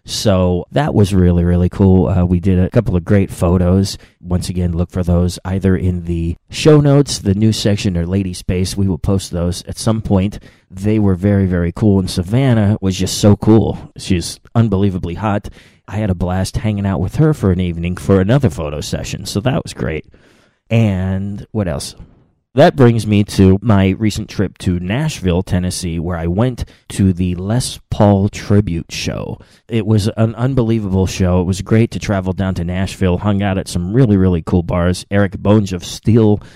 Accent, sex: American, male